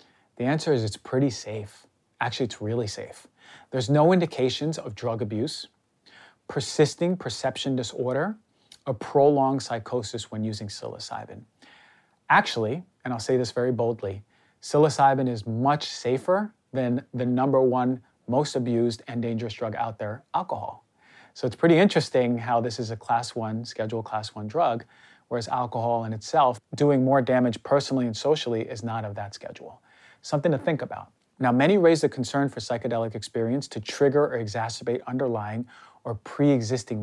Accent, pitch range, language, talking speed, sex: American, 115-140 Hz, English, 155 wpm, male